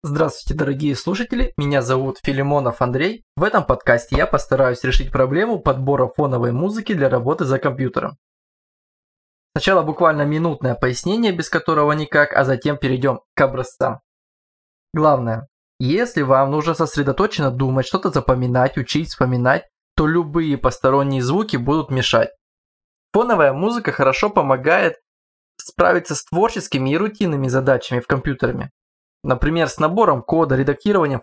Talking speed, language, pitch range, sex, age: 125 wpm, Russian, 130-160 Hz, male, 20-39